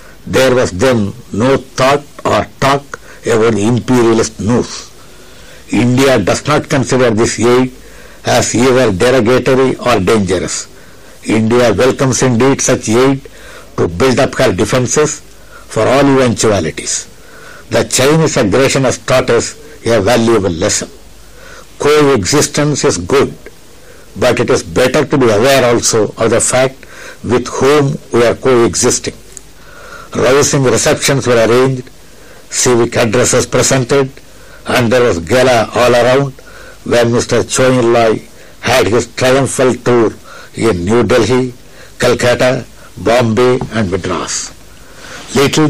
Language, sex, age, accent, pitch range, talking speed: Tamil, male, 60-79, native, 115-130 Hz, 120 wpm